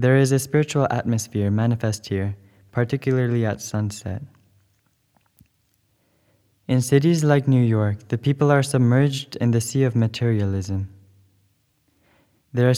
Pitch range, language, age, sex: 105-130 Hz, English, 20-39, male